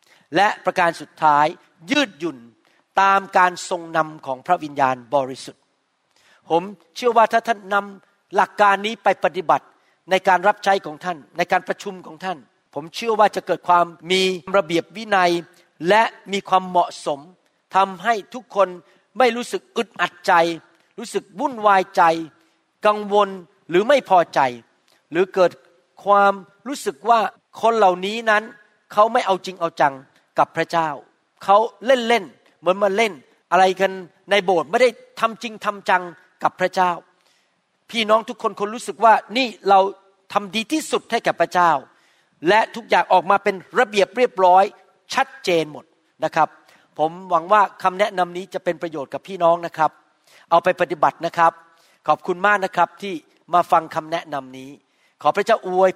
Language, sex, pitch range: Thai, male, 170-205 Hz